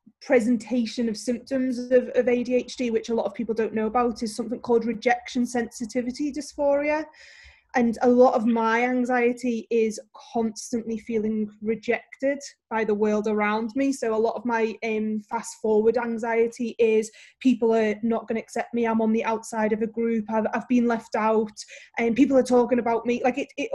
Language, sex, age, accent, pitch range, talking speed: English, female, 20-39, British, 225-250 Hz, 185 wpm